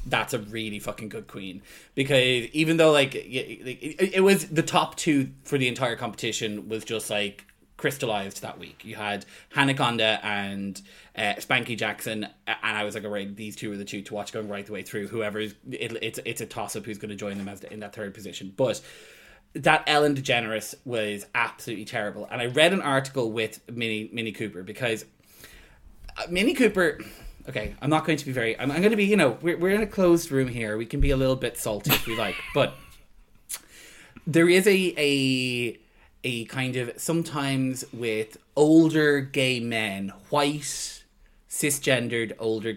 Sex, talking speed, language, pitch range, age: male, 185 wpm, English, 105-135 Hz, 20-39